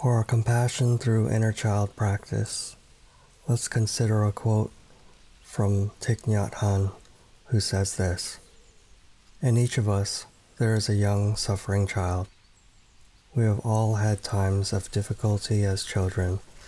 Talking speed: 130 wpm